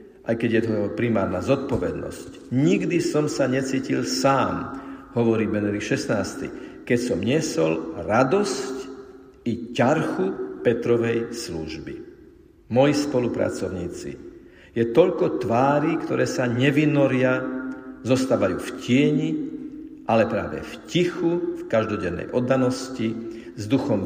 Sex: male